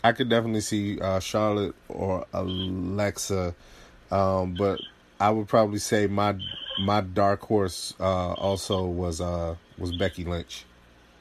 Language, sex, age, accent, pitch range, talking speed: English, male, 30-49, American, 90-100 Hz, 135 wpm